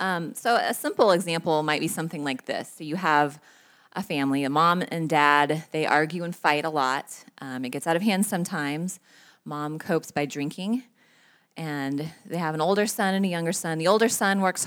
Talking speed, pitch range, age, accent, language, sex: 205 wpm, 150-190 Hz, 20-39, American, English, female